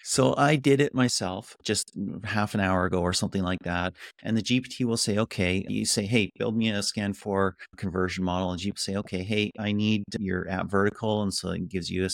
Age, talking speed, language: 30-49, 225 wpm, English